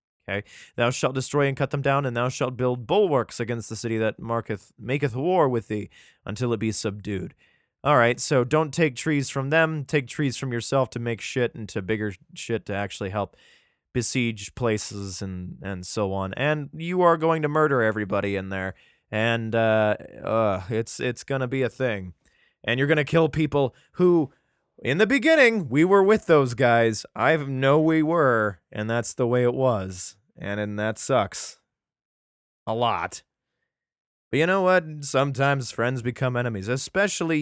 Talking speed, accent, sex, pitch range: 180 wpm, American, male, 110-155 Hz